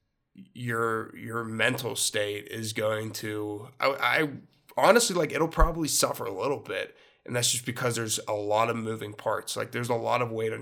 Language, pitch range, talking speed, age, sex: English, 110-125 Hz, 190 wpm, 20-39, male